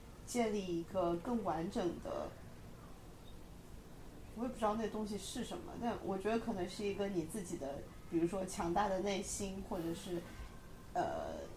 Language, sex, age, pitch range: Chinese, female, 30-49, 175-210 Hz